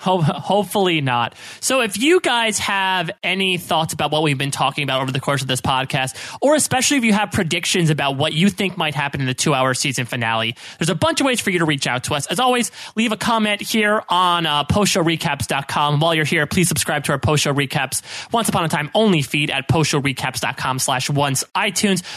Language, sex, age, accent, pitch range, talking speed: English, male, 30-49, American, 145-210 Hz, 225 wpm